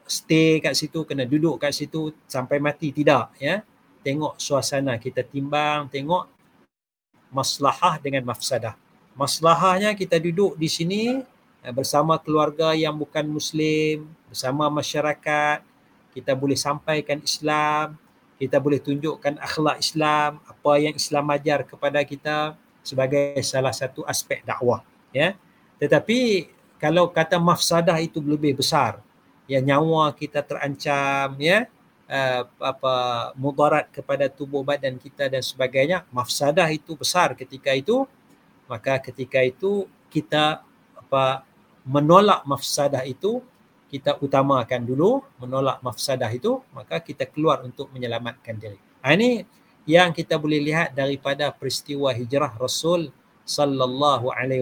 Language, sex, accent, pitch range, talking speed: English, male, Indonesian, 135-160 Hz, 120 wpm